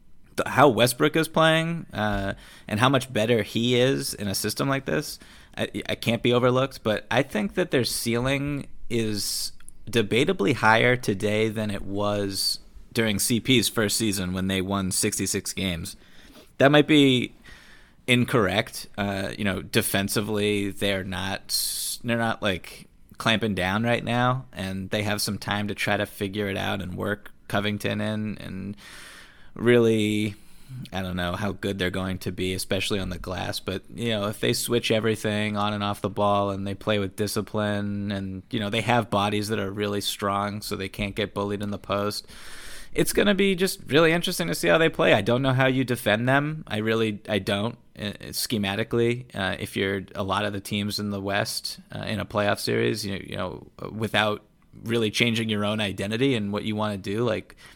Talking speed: 190 wpm